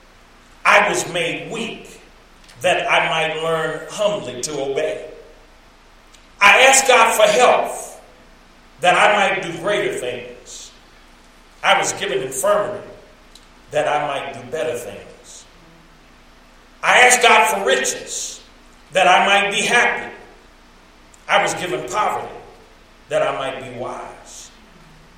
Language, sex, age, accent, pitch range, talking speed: English, male, 40-59, American, 130-215 Hz, 120 wpm